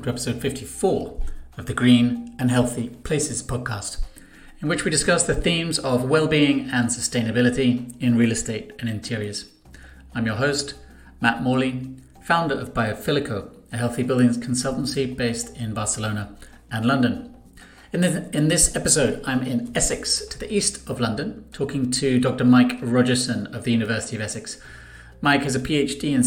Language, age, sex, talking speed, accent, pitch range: English, 40-59, male, 155 wpm, British, 120-140 Hz